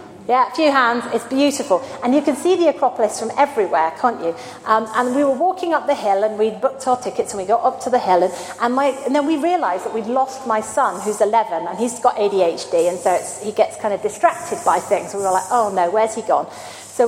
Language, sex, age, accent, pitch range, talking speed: English, female, 40-59, British, 220-300 Hz, 255 wpm